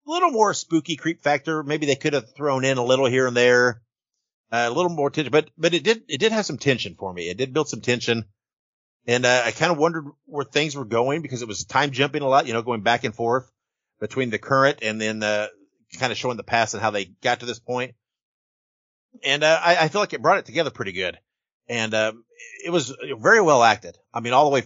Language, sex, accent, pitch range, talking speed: English, male, American, 110-155 Hz, 245 wpm